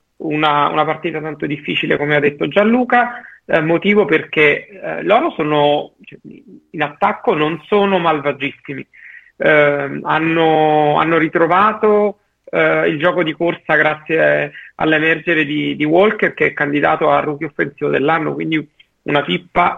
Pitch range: 145-175 Hz